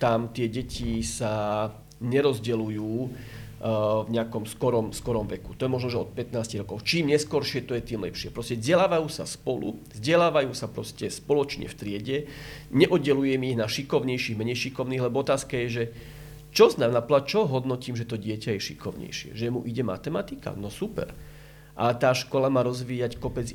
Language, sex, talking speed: Slovak, male, 165 wpm